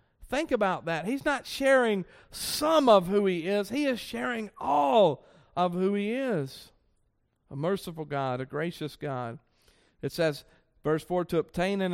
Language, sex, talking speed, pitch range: English, male, 160 wpm, 155-225 Hz